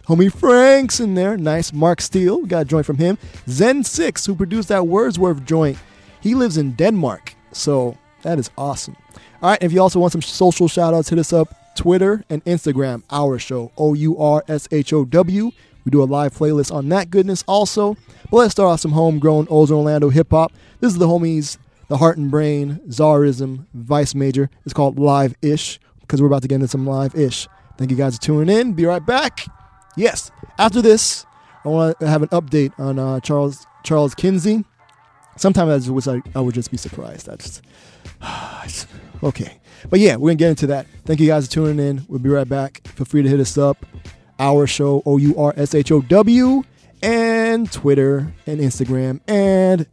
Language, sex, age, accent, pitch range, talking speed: English, male, 20-39, American, 135-175 Hz, 185 wpm